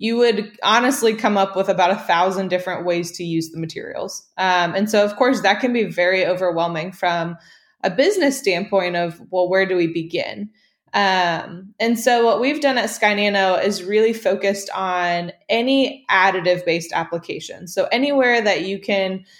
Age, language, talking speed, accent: 20-39, English, 175 wpm, American